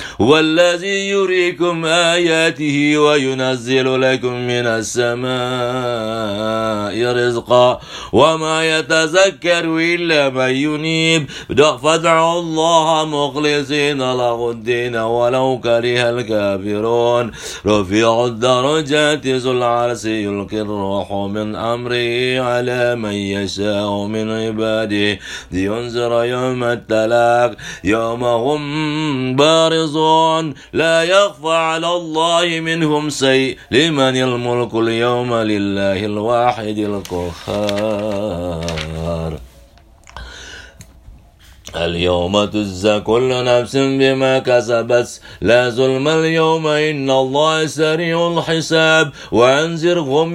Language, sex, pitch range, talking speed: English, male, 120-160 Hz, 65 wpm